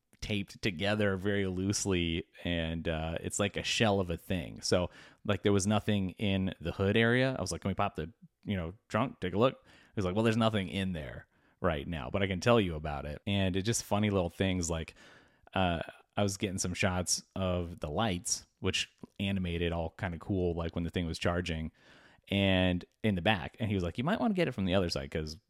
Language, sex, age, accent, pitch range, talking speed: English, male, 30-49, American, 85-105 Hz, 235 wpm